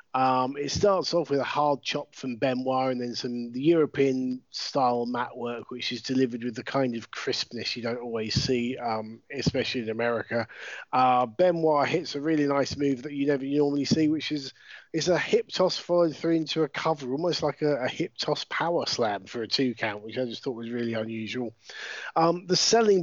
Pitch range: 120-150 Hz